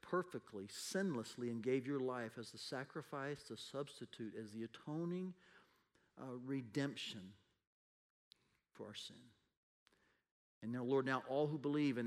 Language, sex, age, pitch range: English, male, 40-59, 115-140 Hz